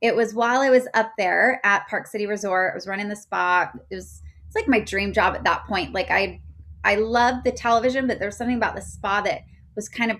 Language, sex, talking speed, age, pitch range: English, female, 245 wpm, 20-39, 185-220 Hz